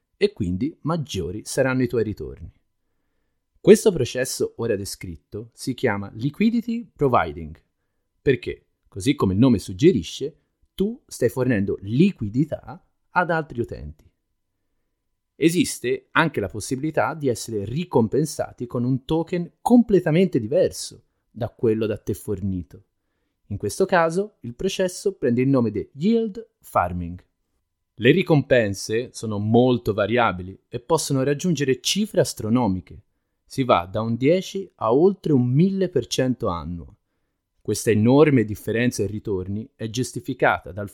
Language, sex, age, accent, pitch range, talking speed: Italian, male, 30-49, native, 100-150 Hz, 125 wpm